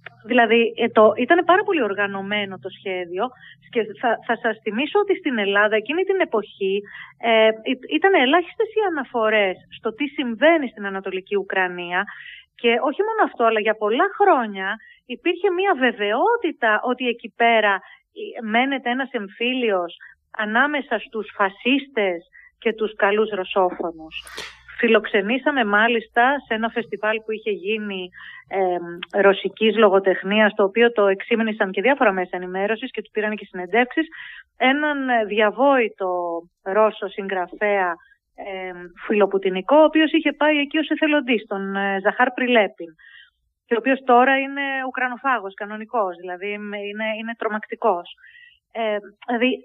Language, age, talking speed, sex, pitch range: Greek, 30-49, 125 wpm, female, 200-260 Hz